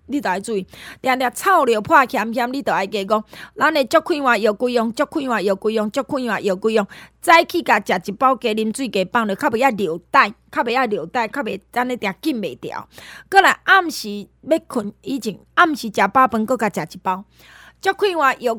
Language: Chinese